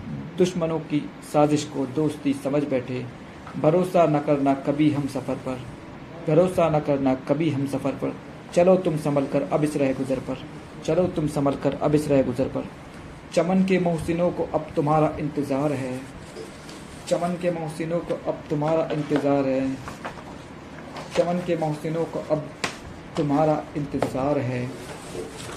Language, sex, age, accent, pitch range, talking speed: Hindi, male, 40-59, native, 135-160 Hz, 150 wpm